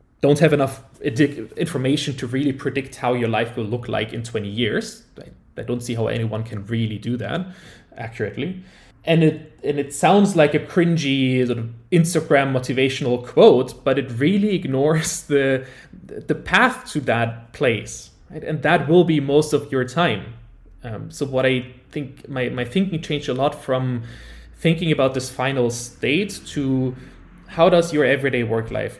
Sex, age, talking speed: male, 20-39, 170 wpm